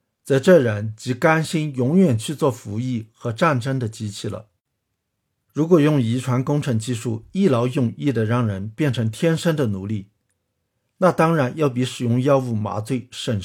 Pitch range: 110-145 Hz